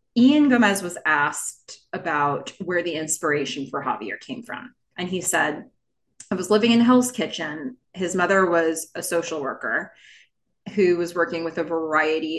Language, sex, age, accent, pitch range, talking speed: English, female, 20-39, American, 160-215 Hz, 160 wpm